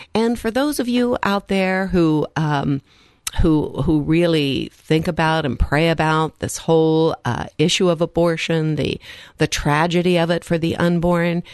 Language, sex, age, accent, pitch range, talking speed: English, female, 50-69, American, 155-215 Hz, 160 wpm